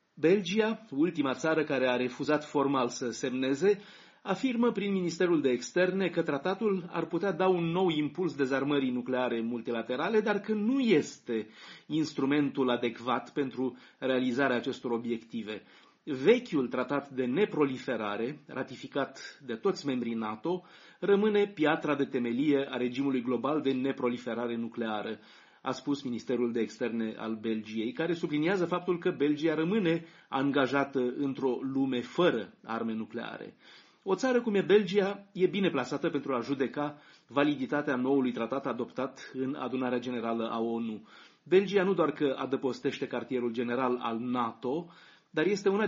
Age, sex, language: 30-49, male, Romanian